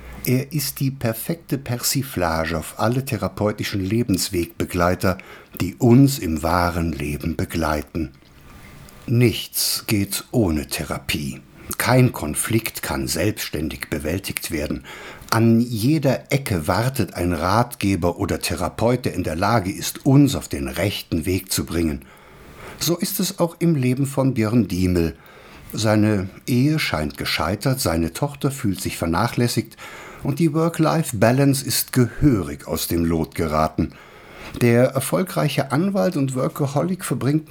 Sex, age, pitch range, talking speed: male, 60-79, 90-140 Hz, 125 wpm